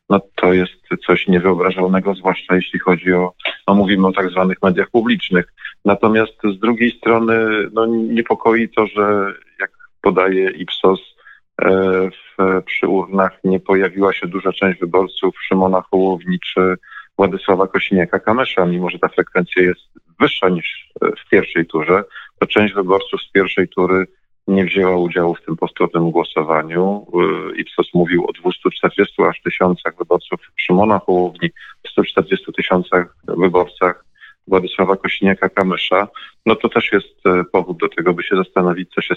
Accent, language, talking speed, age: native, Polish, 140 wpm, 40-59